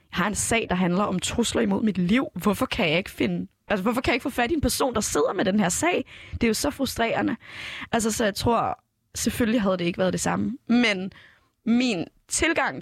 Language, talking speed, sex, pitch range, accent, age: Danish, 240 wpm, female, 175-220 Hz, native, 20-39